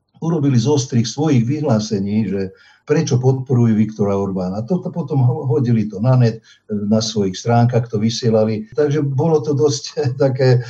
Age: 50-69